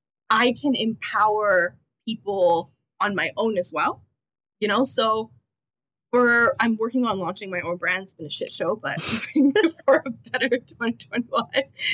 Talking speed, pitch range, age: 140 wpm, 195-265 Hz, 20-39